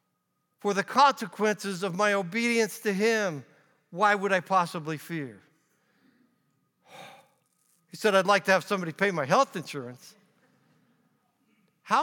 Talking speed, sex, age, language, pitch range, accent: 125 wpm, male, 50-69, English, 170-230 Hz, American